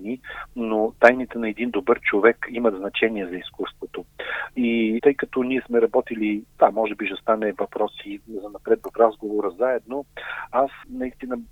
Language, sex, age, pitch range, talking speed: Bulgarian, male, 40-59, 105-125 Hz, 155 wpm